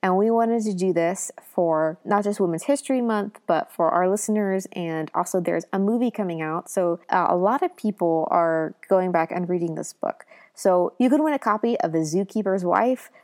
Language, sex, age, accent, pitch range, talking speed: English, female, 20-39, American, 175-220 Hz, 210 wpm